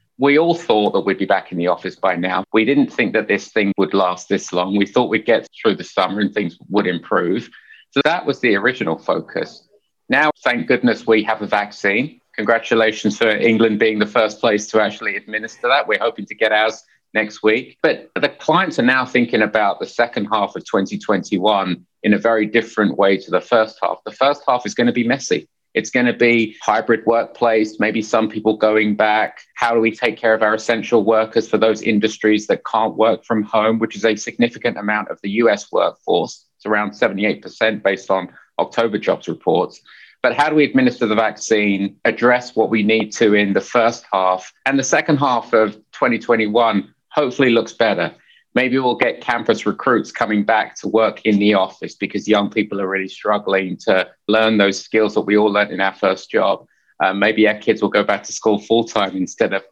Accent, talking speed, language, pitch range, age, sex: British, 205 wpm, English, 105-115 Hz, 30-49, male